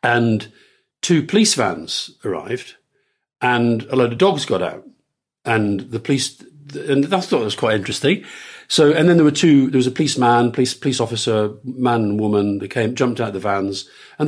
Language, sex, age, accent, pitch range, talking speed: English, male, 50-69, British, 120-175 Hz, 190 wpm